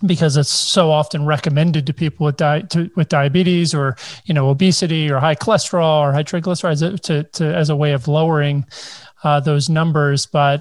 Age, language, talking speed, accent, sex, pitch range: 40-59, English, 190 wpm, American, male, 145-175 Hz